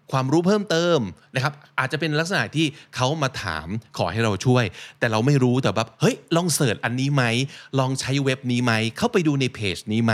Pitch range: 115-150 Hz